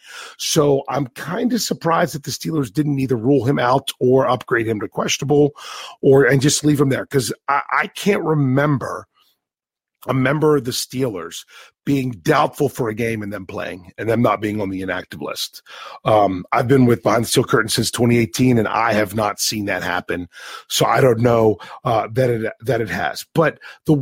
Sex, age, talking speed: male, 40-59, 195 wpm